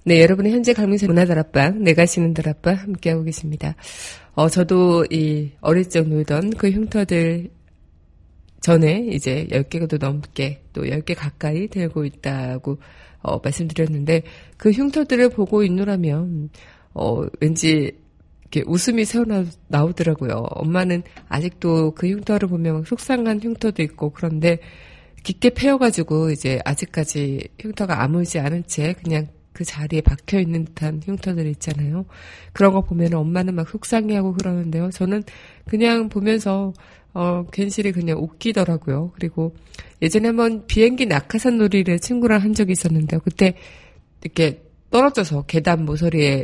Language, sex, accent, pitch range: Korean, female, native, 155-195 Hz